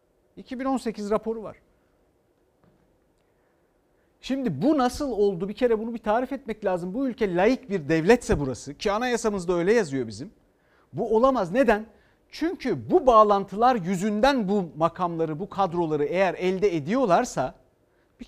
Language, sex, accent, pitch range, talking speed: Turkish, male, native, 185-250 Hz, 130 wpm